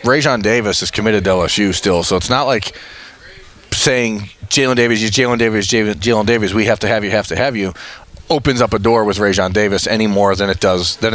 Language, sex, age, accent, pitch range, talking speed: English, male, 30-49, American, 100-130 Hz, 220 wpm